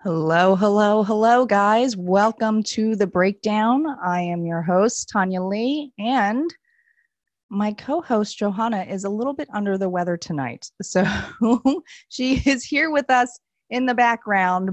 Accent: American